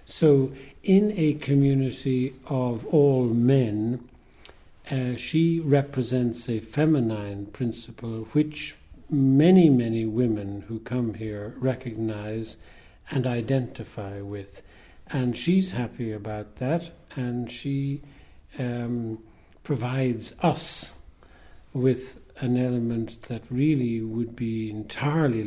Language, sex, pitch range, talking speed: English, male, 110-135 Hz, 100 wpm